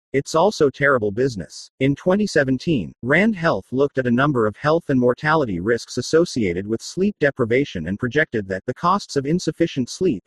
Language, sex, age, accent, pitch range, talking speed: English, male, 40-59, American, 120-160 Hz, 170 wpm